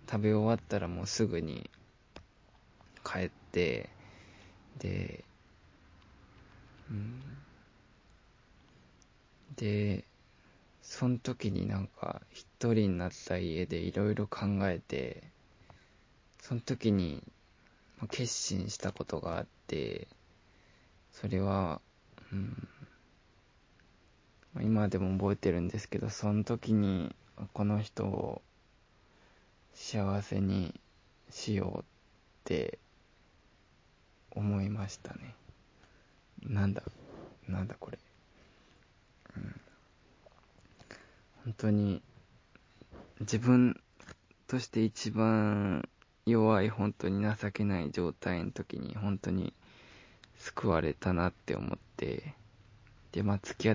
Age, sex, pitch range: 20-39, male, 95-110 Hz